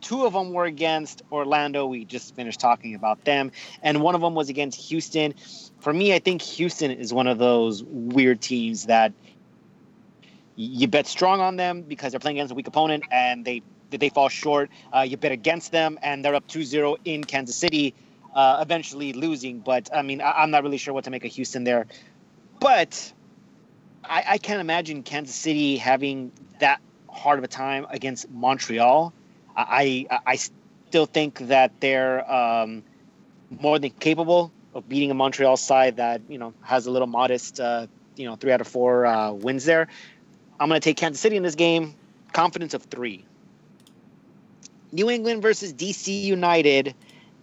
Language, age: English, 30-49